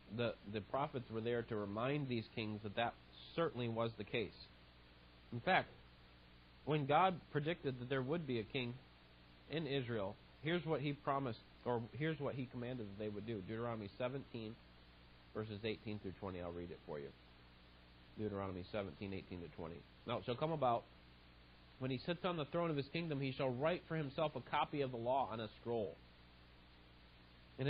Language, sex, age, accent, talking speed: Italian, male, 40-59, American, 185 wpm